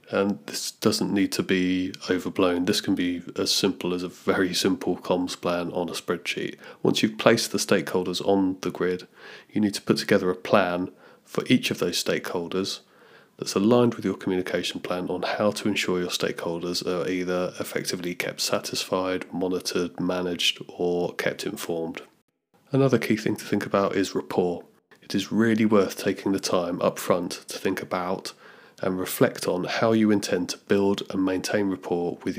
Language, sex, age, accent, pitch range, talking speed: English, male, 30-49, British, 90-105 Hz, 175 wpm